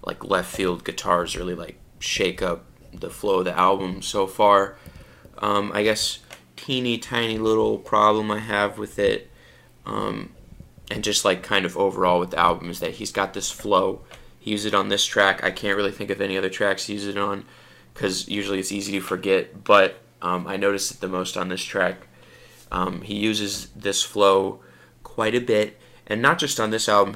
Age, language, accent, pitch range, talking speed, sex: 20-39, English, American, 95-110 Hz, 195 wpm, male